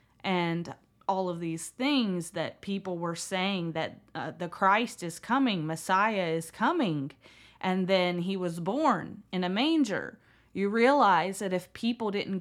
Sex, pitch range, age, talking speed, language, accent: female, 170-205 Hz, 20-39, 155 wpm, English, American